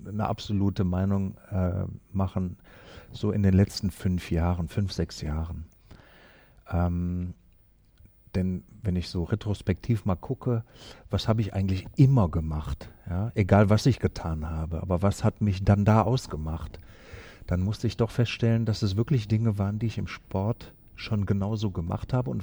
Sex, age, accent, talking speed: male, 50-69, German, 160 wpm